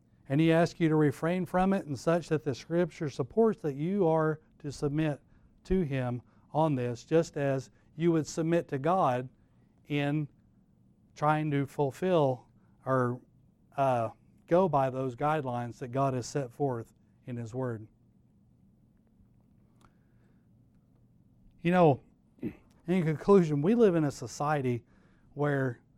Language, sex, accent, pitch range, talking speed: English, male, American, 130-165 Hz, 135 wpm